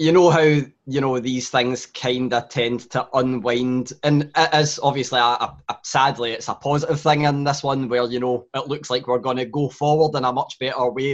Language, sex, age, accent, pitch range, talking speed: English, male, 20-39, British, 125-155 Hz, 230 wpm